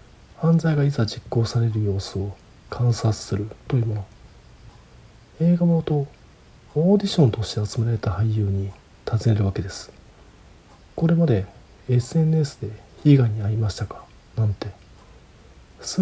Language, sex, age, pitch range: Japanese, male, 40-59, 100-135 Hz